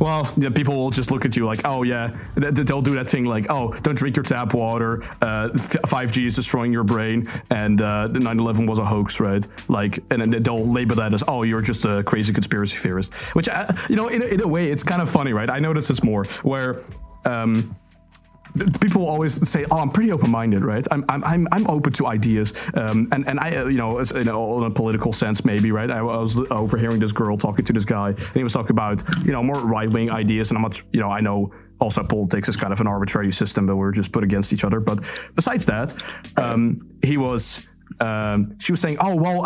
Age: 20-39